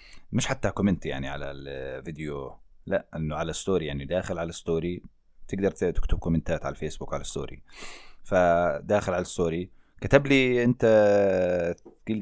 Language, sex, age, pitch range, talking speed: English, male, 30-49, 90-135 Hz, 135 wpm